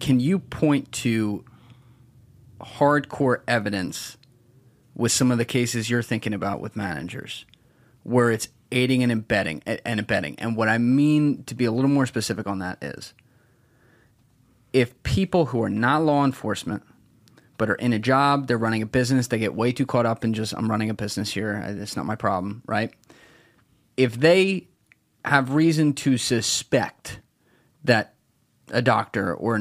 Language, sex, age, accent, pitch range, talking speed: English, male, 30-49, American, 115-130 Hz, 165 wpm